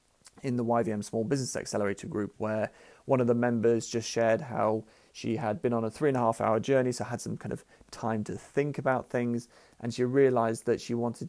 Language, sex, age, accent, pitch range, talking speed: English, male, 40-59, British, 110-125 Hz, 225 wpm